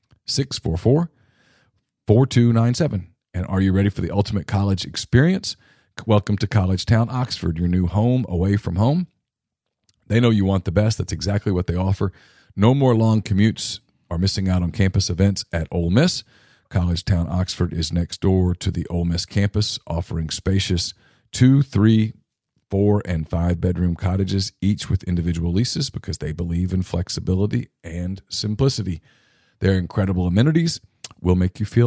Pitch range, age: 90-120 Hz, 40-59